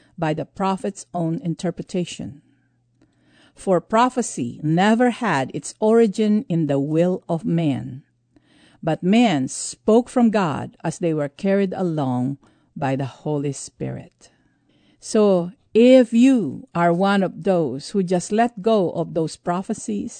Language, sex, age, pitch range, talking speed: English, female, 50-69, 155-200 Hz, 130 wpm